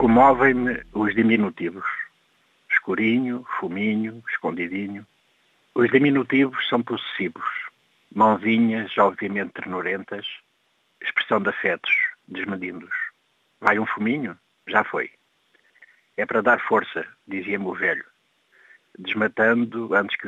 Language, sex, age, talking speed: Portuguese, male, 60-79, 95 wpm